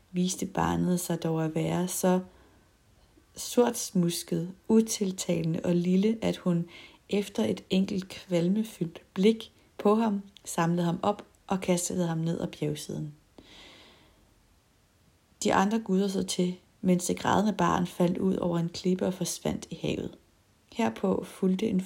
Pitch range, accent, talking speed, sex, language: 170-195 Hz, native, 135 wpm, female, Danish